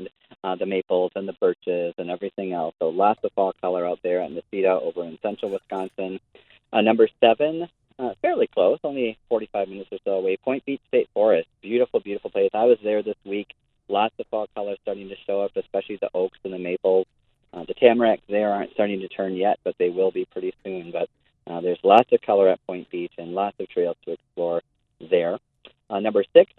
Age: 40-59